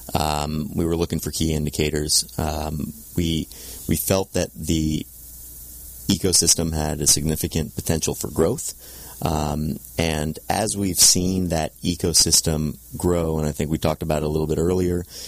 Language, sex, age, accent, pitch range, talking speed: English, male, 30-49, American, 75-90 Hz, 155 wpm